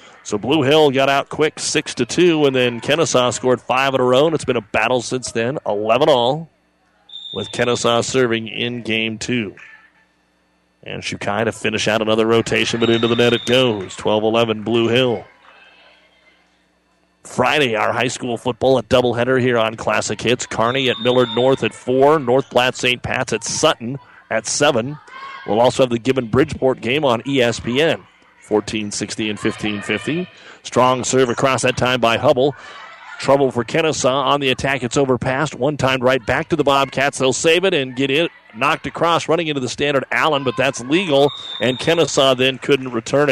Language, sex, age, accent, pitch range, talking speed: English, male, 40-59, American, 115-140 Hz, 180 wpm